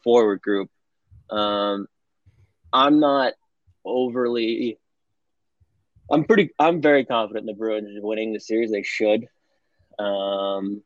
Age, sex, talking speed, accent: 20-39, male, 110 wpm, American